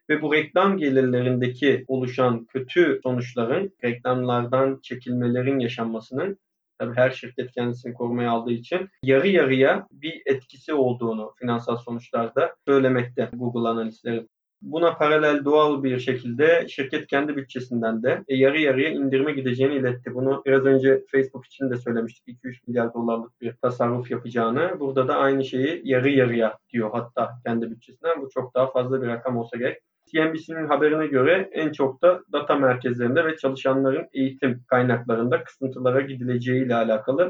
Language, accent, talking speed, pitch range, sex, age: Turkish, native, 140 wpm, 125-150 Hz, male, 30-49